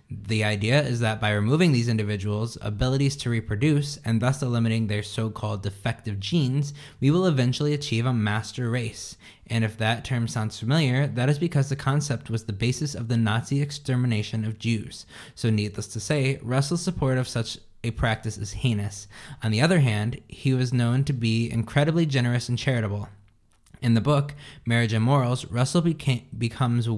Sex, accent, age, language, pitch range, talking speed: male, American, 20-39, English, 110-135 Hz, 175 wpm